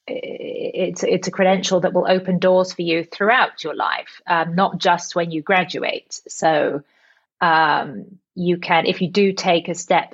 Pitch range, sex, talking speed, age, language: 165-190 Hz, female, 170 wpm, 30-49, English